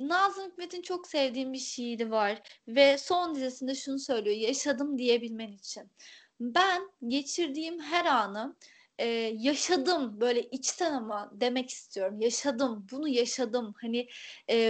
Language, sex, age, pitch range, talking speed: Turkish, female, 30-49, 240-320 Hz, 125 wpm